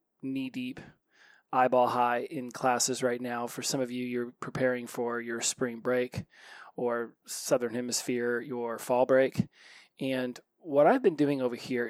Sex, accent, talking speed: male, American, 145 wpm